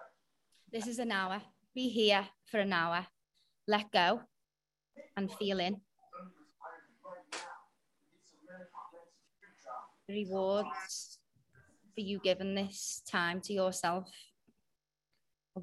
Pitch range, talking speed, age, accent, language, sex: 185-230 Hz, 90 wpm, 20-39, British, English, female